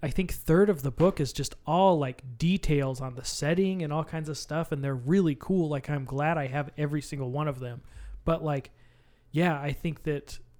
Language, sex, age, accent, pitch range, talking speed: English, male, 20-39, American, 135-155 Hz, 220 wpm